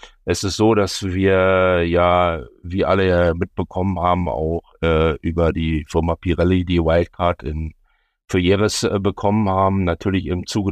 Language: German